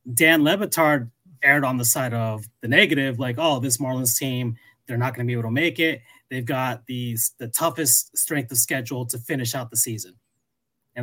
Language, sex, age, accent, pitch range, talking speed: English, male, 30-49, American, 115-150 Hz, 200 wpm